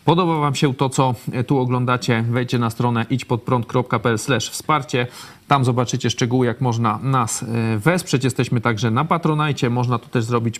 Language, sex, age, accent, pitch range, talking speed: Polish, male, 40-59, native, 120-145 Hz, 160 wpm